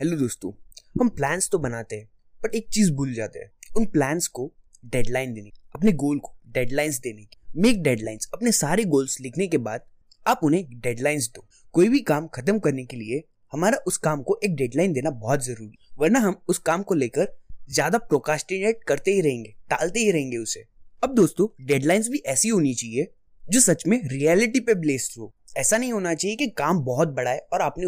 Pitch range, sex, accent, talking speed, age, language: 130-205 Hz, male, native, 195 wpm, 20-39, Hindi